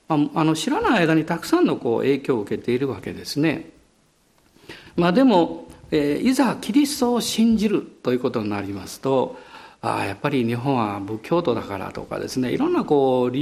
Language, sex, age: Japanese, male, 50-69